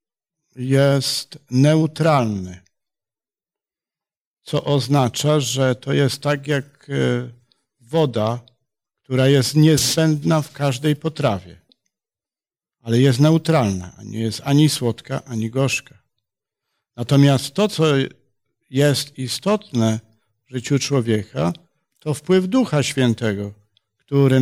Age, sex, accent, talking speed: 50-69, male, native, 95 wpm